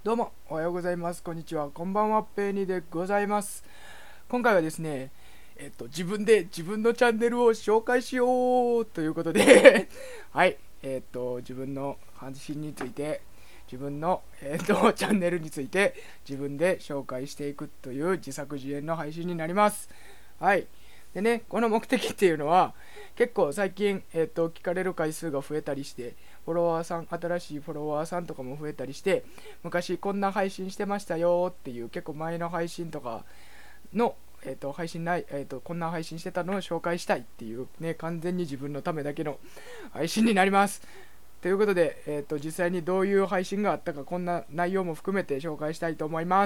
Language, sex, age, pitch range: Japanese, male, 20-39, 145-200 Hz